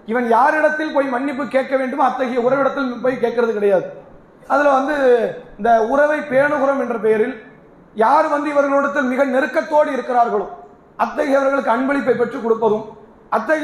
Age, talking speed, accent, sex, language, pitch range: 30-49, 55 wpm, Indian, male, English, 240-285 Hz